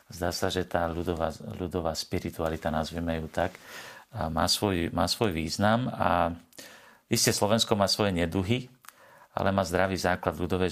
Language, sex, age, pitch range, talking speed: Slovak, male, 40-59, 85-100 Hz, 145 wpm